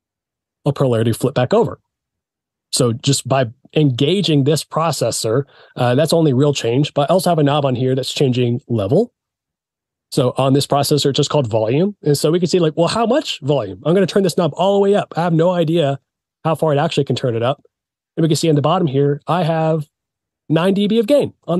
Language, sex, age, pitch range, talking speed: English, male, 30-49, 130-170 Hz, 225 wpm